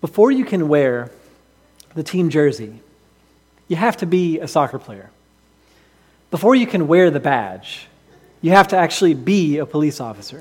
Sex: male